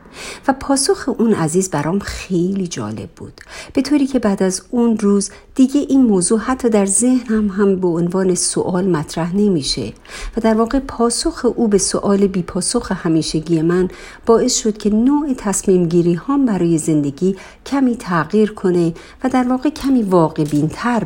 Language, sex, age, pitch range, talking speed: Persian, female, 50-69, 165-230 Hz, 160 wpm